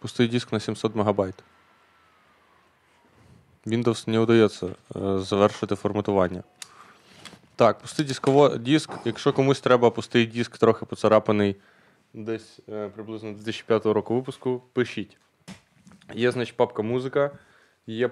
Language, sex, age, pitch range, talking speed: Ukrainian, male, 20-39, 105-125 Hz, 110 wpm